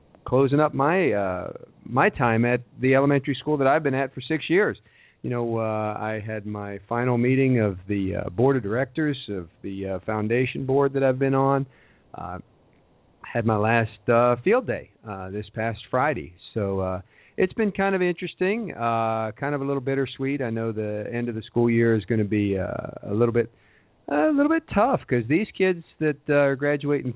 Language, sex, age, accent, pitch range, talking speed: English, male, 50-69, American, 105-135 Hz, 205 wpm